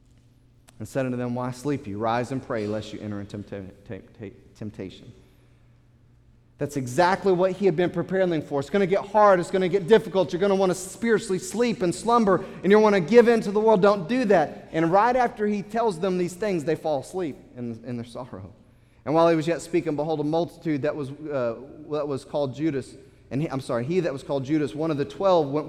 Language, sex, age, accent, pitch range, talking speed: English, male, 30-49, American, 125-170 Hz, 250 wpm